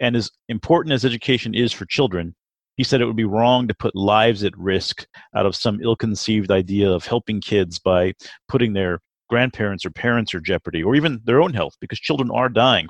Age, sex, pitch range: 40-59, male, 100-130 Hz